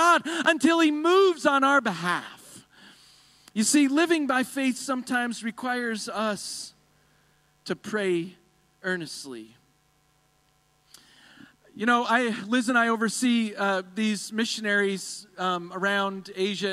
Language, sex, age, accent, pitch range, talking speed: English, male, 40-59, American, 185-245 Hz, 110 wpm